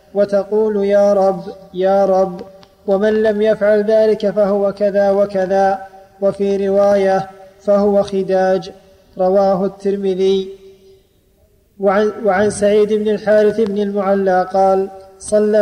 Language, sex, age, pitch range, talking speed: Arabic, male, 20-39, 190-210 Hz, 100 wpm